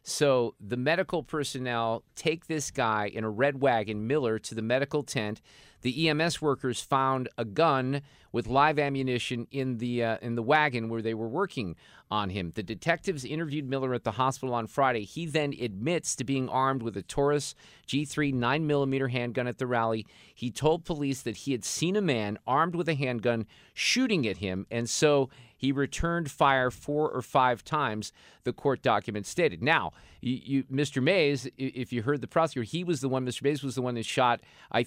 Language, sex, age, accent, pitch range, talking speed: English, male, 50-69, American, 115-145 Hz, 195 wpm